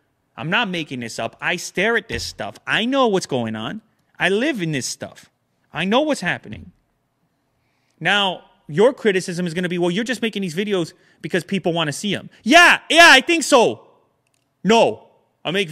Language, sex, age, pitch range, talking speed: English, male, 30-49, 135-195 Hz, 195 wpm